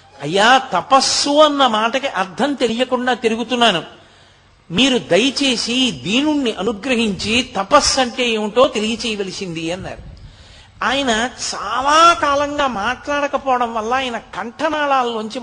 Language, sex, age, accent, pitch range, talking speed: Telugu, male, 50-69, native, 175-245 Hz, 90 wpm